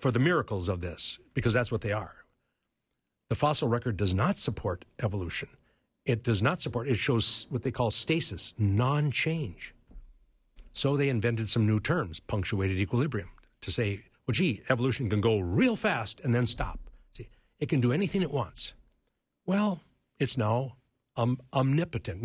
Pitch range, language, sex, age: 110-145 Hz, English, male, 60-79